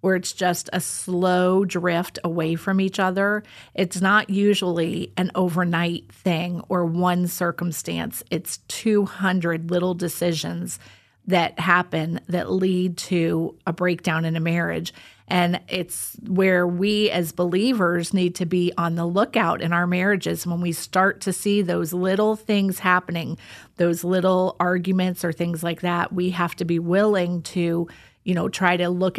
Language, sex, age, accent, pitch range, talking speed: English, female, 30-49, American, 170-195 Hz, 155 wpm